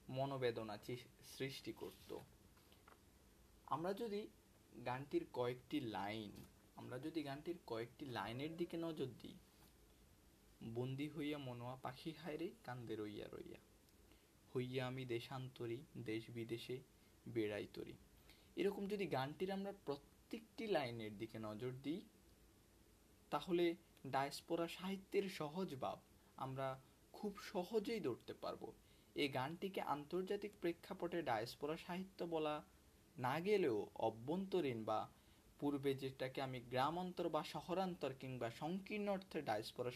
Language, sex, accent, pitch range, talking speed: Bengali, male, native, 120-170 Hz, 90 wpm